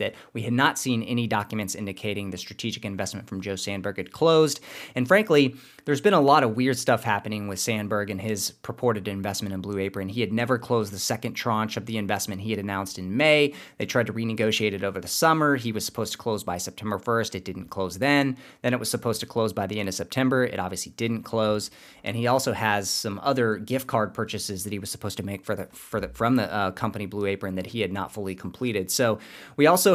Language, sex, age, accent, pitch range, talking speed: English, male, 30-49, American, 100-120 Hz, 240 wpm